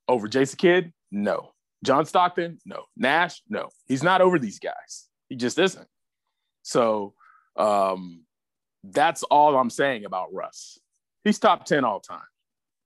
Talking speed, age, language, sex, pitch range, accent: 140 wpm, 30-49, English, male, 115-180 Hz, American